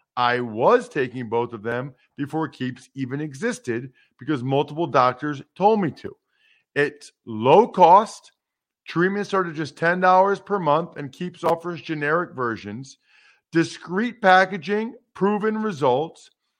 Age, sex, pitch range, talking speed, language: 50-69, male, 155-205 Hz, 125 wpm, English